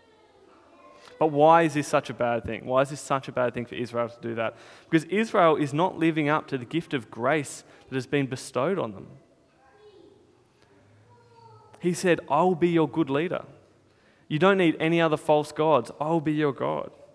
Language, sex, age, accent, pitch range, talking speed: English, male, 20-39, Australian, 140-175 Hz, 195 wpm